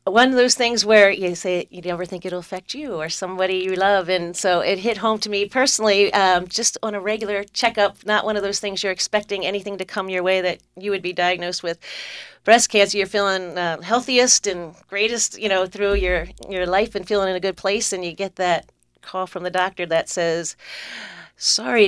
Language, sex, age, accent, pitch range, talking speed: English, female, 40-59, American, 180-210 Hz, 220 wpm